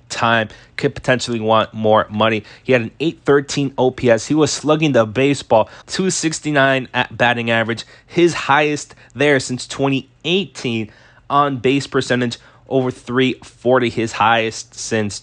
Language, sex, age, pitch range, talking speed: English, male, 20-39, 115-140 Hz, 130 wpm